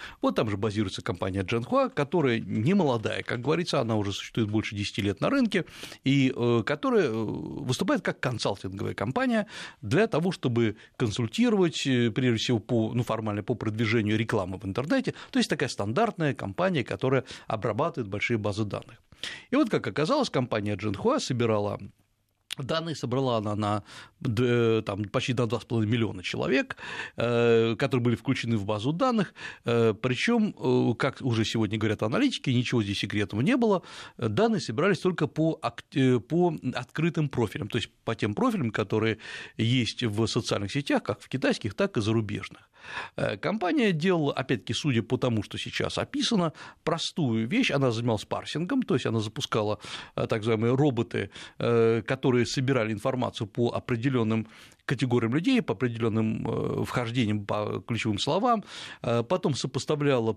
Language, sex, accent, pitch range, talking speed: Russian, male, native, 110-150 Hz, 140 wpm